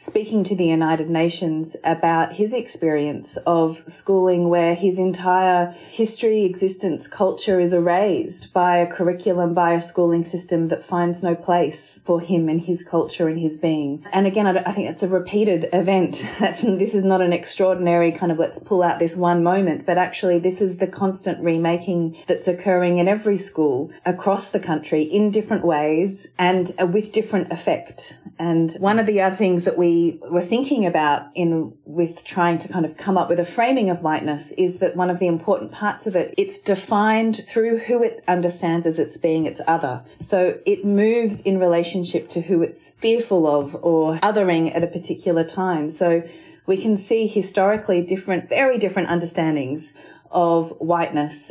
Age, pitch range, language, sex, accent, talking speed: 30-49, 165-195 Hz, English, female, Australian, 180 wpm